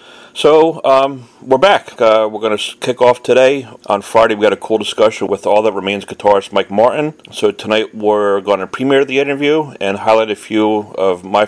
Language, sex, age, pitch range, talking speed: English, male, 40-59, 100-130 Hz, 195 wpm